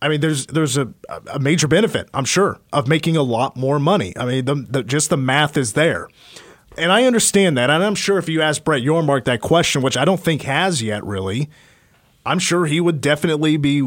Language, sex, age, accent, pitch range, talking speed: English, male, 30-49, American, 130-160 Hz, 225 wpm